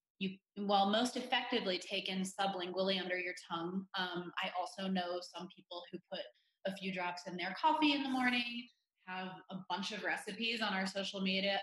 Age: 20-39